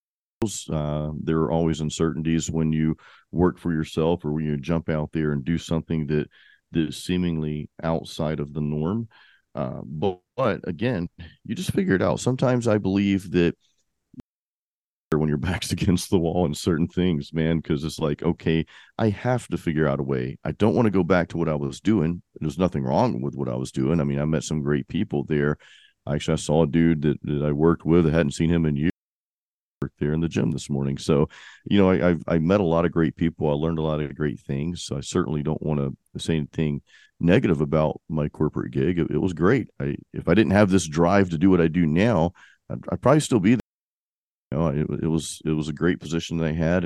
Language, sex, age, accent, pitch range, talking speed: English, male, 40-59, American, 75-90 Hz, 230 wpm